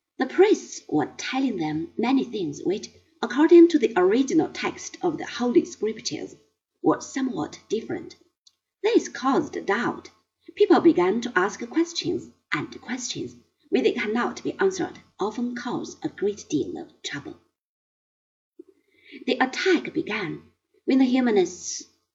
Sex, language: female, Chinese